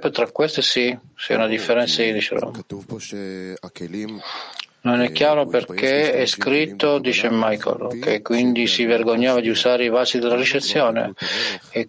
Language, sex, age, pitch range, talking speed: Italian, male, 50-69, 110-130 Hz, 135 wpm